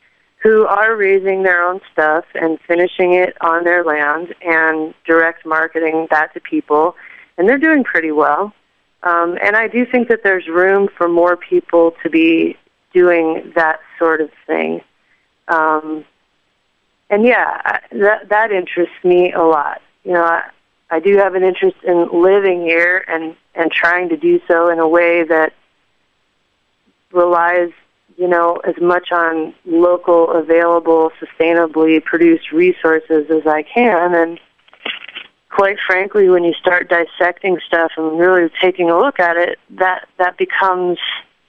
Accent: American